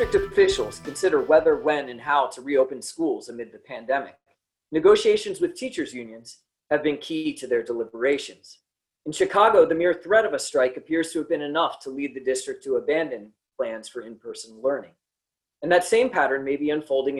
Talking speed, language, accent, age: 185 wpm, English, American, 30-49